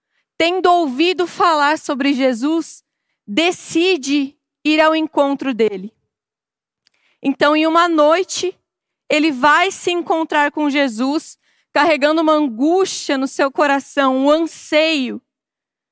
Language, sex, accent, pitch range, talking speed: Portuguese, female, Brazilian, 280-330 Hz, 105 wpm